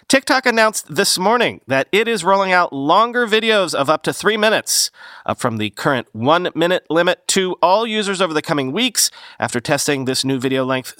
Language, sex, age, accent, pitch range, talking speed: English, male, 40-59, American, 125-195 Hz, 190 wpm